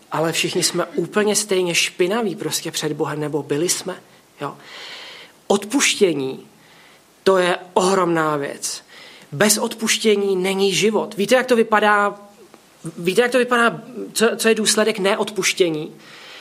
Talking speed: 130 wpm